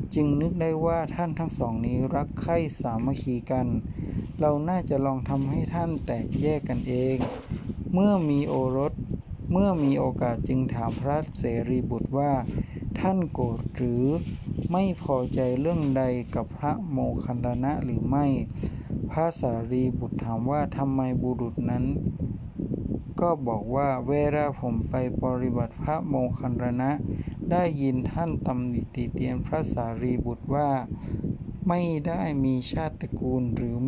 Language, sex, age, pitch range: Thai, male, 60-79, 125-150 Hz